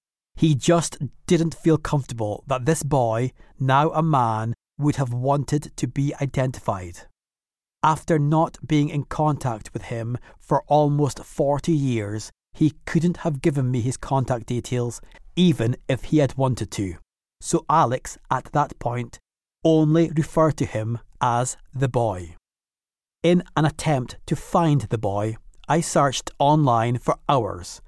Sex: male